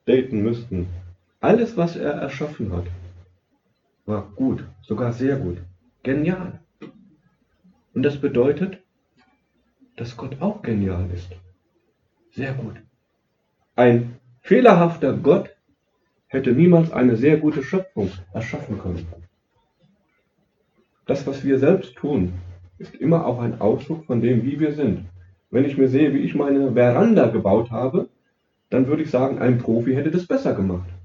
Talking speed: 135 wpm